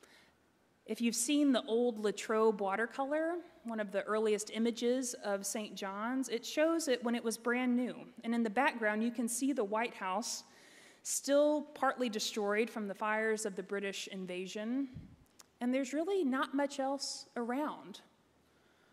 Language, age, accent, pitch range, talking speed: English, 30-49, American, 210-260 Hz, 160 wpm